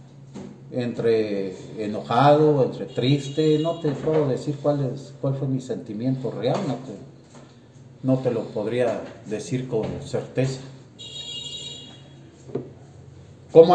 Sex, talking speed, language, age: male, 100 wpm, Spanish, 40-59